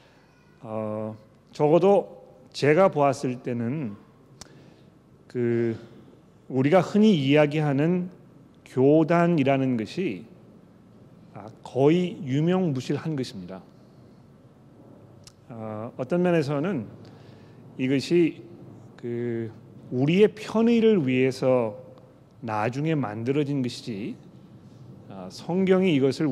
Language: Korean